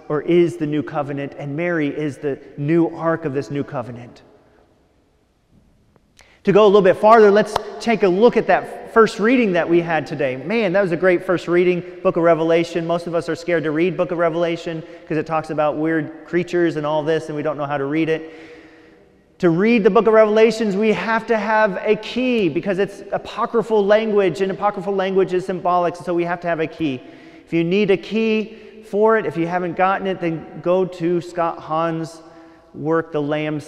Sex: male